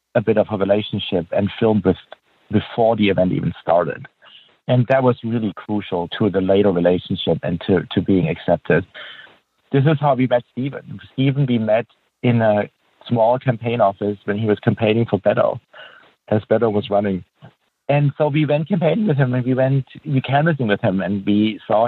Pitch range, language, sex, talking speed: 100-130 Hz, English, male, 185 wpm